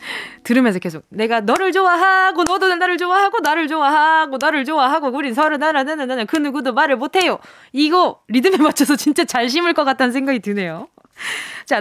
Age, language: 20-39, Korean